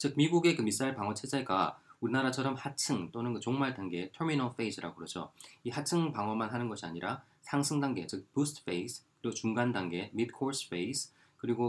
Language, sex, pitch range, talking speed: English, male, 95-130 Hz, 165 wpm